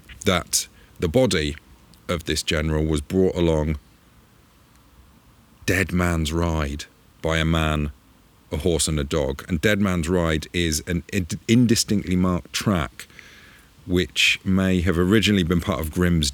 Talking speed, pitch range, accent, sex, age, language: 135 wpm, 75-95 Hz, British, male, 40-59, English